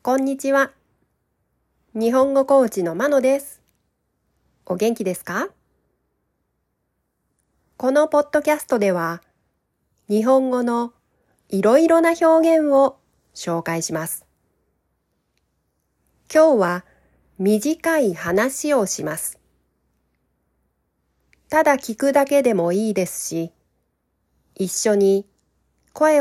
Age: 40-59